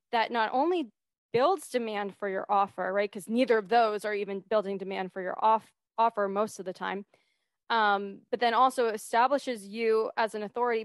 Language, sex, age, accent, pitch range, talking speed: English, female, 20-39, American, 210-250 Hz, 185 wpm